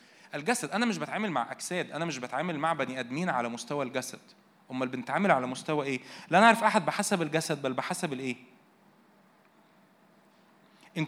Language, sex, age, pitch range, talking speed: Arabic, male, 20-39, 150-210 Hz, 155 wpm